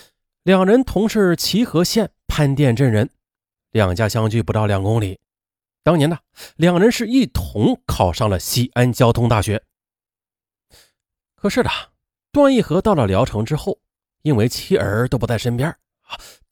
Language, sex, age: Chinese, male, 30-49